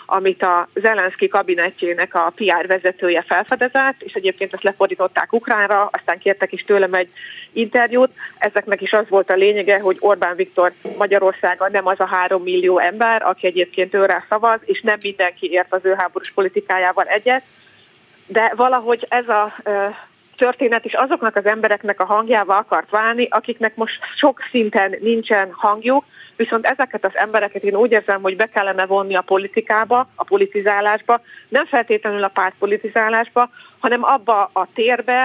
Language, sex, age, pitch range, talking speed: Hungarian, female, 30-49, 190-225 Hz, 155 wpm